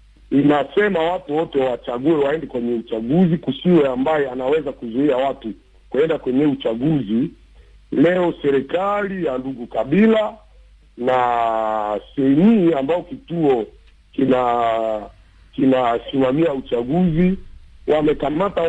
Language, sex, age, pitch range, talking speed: Swahili, male, 50-69, 130-180 Hz, 90 wpm